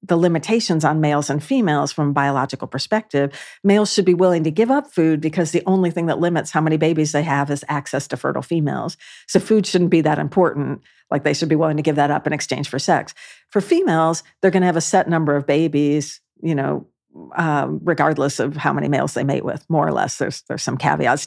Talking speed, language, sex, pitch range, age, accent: 230 wpm, English, female, 145-180 Hz, 50-69, American